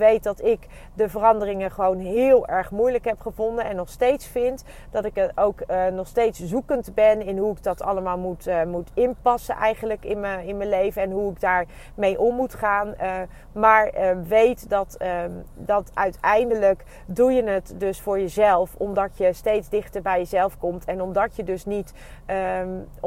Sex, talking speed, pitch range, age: female, 190 wpm, 185-215 Hz, 30-49